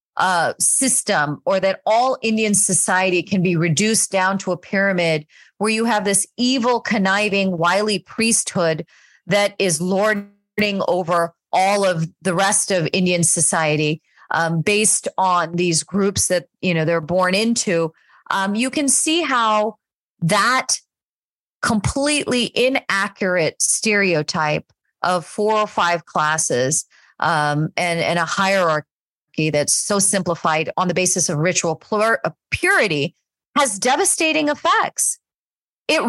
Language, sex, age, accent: English, female, 40-59, American